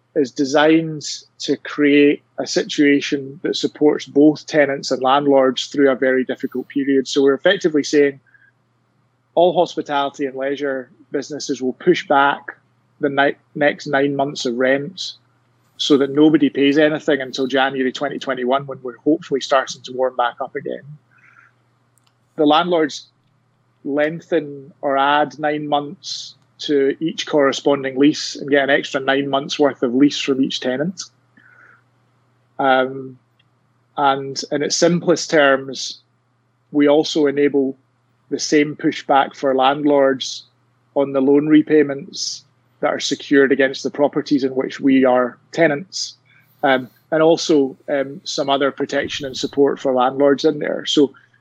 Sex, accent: male, British